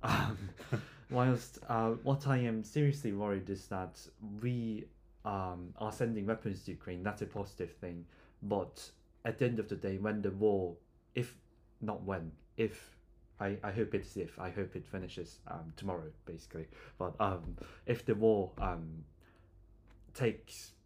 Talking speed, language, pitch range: 155 wpm, English, 90-110 Hz